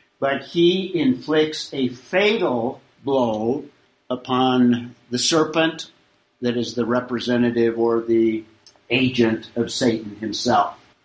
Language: English